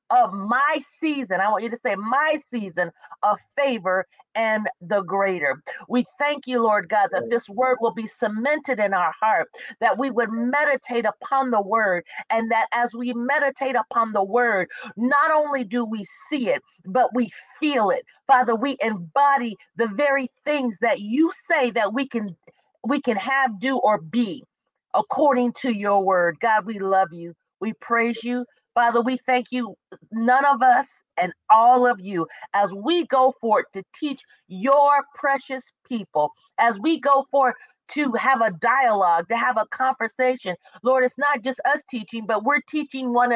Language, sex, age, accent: English, female, 40-59, American